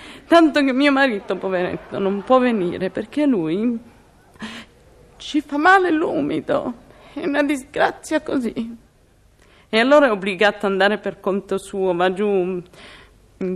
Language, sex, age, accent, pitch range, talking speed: Italian, female, 30-49, native, 205-280 Hz, 135 wpm